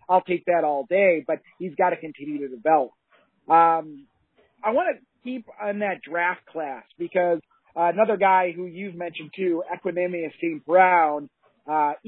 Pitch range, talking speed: 165-200 Hz, 165 wpm